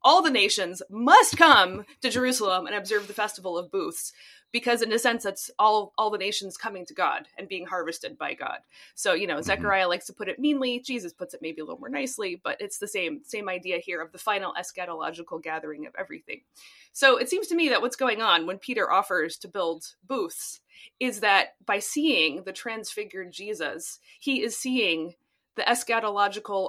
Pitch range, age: 195-275 Hz, 20-39